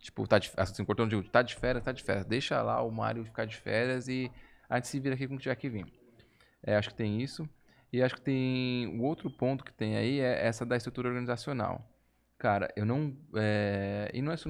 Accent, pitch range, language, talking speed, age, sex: Brazilian, 110-135 Hz, Portuguese, 220 wpm, 10-29, male